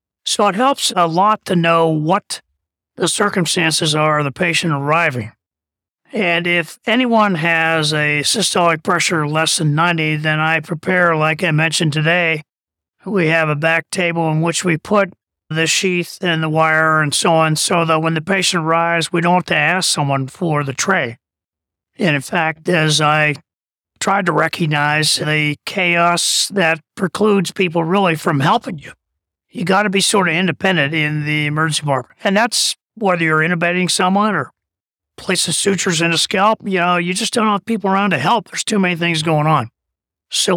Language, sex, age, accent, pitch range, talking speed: English, male, 40-59, American, 155-190 Hz, 180 wpm